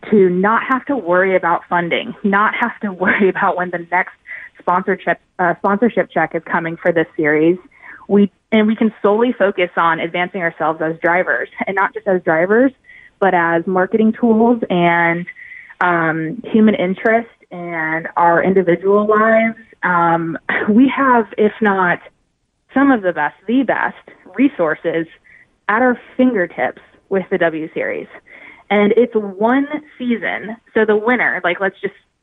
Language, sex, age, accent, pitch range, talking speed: English, female, 20-39, American, 180-230 Hz, 150 wpm